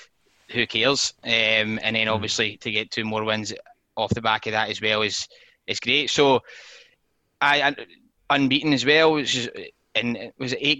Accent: British